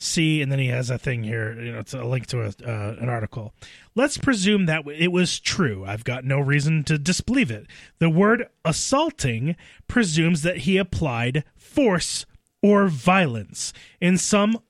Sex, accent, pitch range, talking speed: male, American, 135-200 Hz, 170 wpm